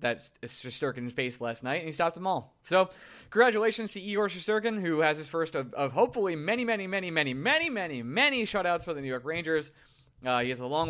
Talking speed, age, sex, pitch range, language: 225 wpm, 20-39, male, 135-210 Hz, English